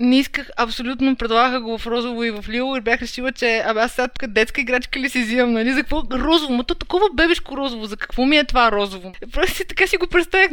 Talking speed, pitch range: 245 wpm, 225-275 Hz